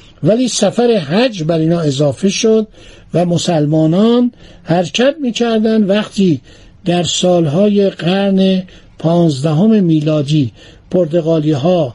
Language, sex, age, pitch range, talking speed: Persian, male, 60-79, 160-210 Hz, 90 wpm